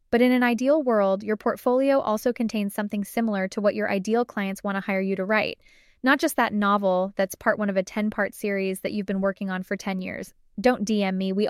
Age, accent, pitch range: 10-29, American, 195-230 Hz